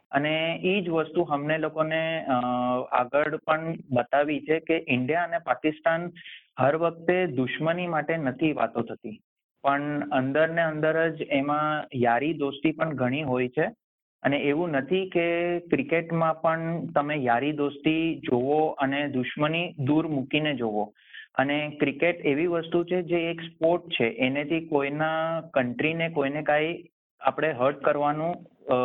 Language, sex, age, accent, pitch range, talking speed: Gujarati, male, 30-49, native, 130-160 Hz, 135 wpm